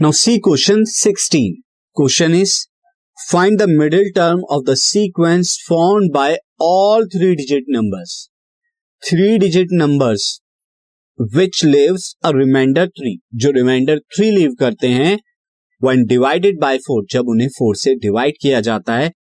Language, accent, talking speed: Hindi, native, 135 wpm